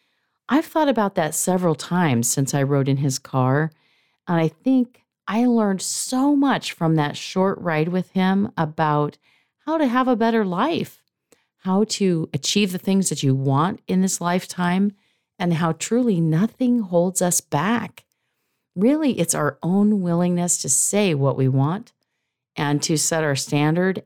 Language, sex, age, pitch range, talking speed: English, female, 40-59, 145-210 Hz, 160 wpm